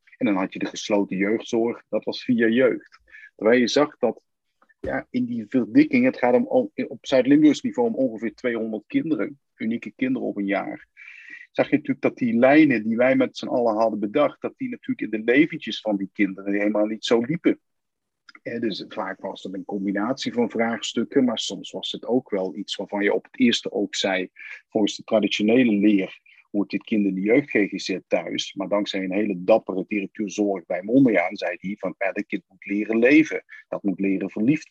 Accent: Dutch